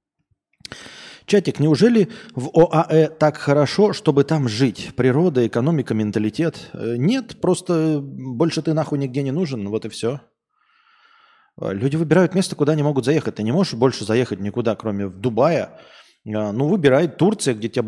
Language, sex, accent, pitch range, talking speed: Russian, male, native, 110-145 Hz, 150 wpm